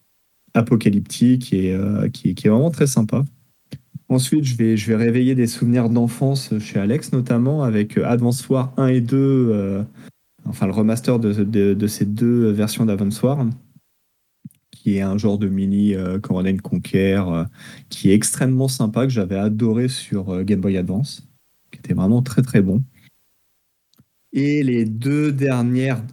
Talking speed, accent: 170 wpm, French